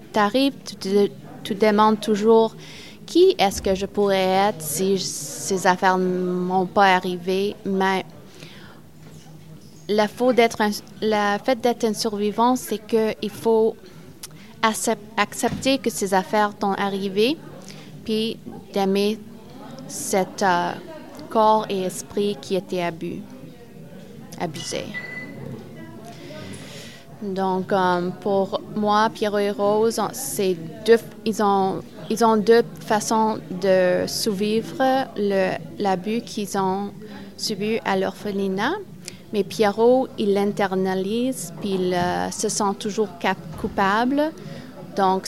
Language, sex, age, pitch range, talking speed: French, female, 20-39, 190-220 Hz, 110 wpm